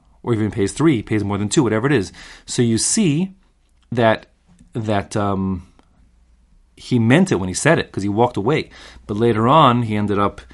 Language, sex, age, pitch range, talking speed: English, male, 30-49, 95-125 Hz, 195 wpm